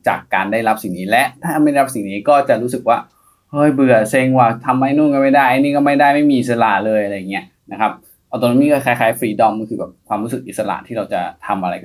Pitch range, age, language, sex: 115-145 Hz, 20-39, Thai, male